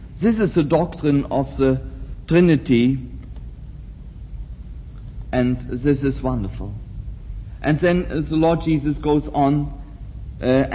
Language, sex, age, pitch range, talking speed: English, male, 60-79, 110-150 Hz, 105 wpm